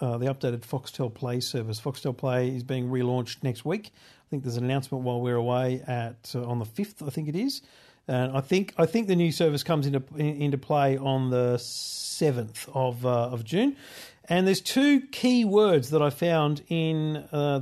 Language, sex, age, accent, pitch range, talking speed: English, male, 50-69, Australian, 125-155 Hz, 205 wpm